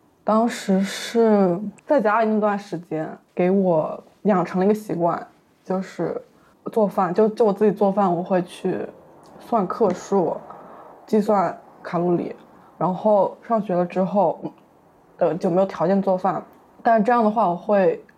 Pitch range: 170-210 Hz